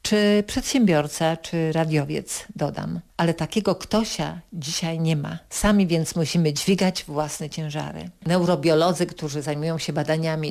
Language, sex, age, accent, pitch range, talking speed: Polish, female, 50-69, native, 160-200 Hz, 125 wpm